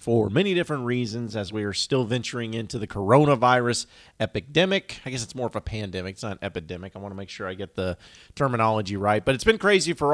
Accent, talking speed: American, 230 wpm